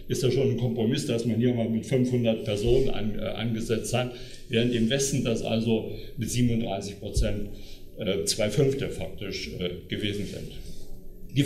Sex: male